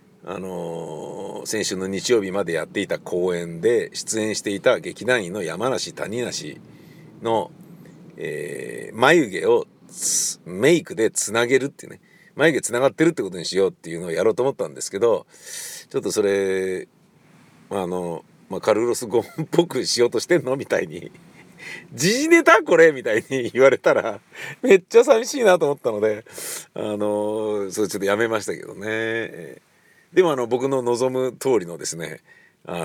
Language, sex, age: Japanese, male, 50-69